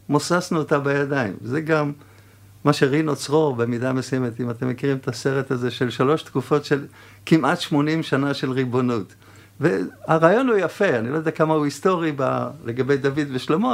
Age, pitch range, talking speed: 50-69, 120-160 Hz, 165 wpm